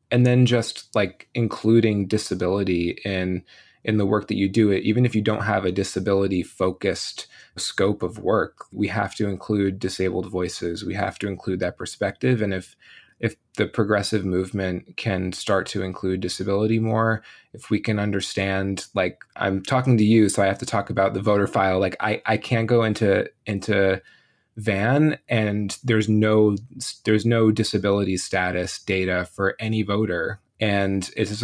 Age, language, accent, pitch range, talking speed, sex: 20-39, English, American, 95-110 Hz, 170 wpm, male